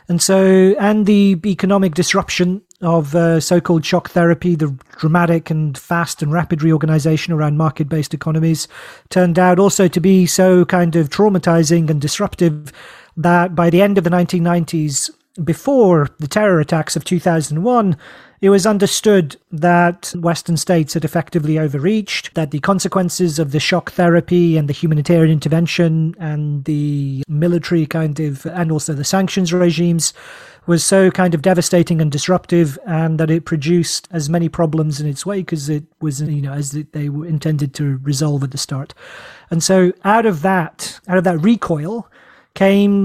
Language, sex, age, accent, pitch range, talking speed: English, male, 40-59, British, 160-185 Hz, 165 wpm